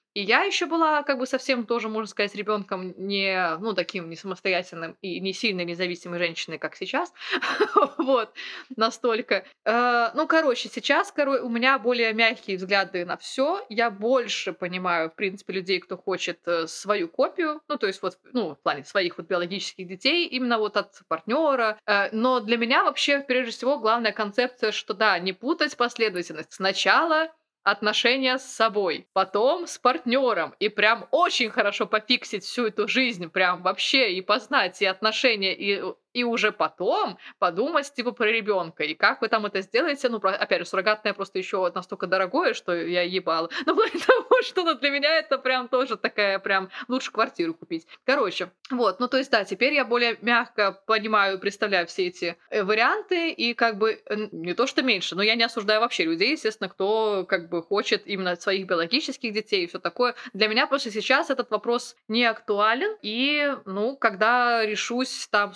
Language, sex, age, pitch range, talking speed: Russian, female, 20-39, 195-260 Hz, 170 wpm